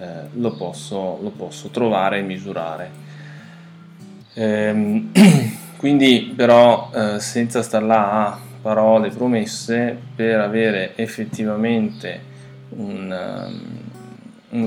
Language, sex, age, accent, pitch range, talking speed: Italian, male, 20-39, native, 105-125 Hz, 100 wpm